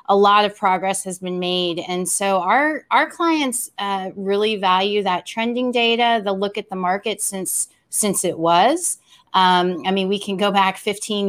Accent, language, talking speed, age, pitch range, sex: American, English, 185 wpm, 30-49, 180-215 Hz, female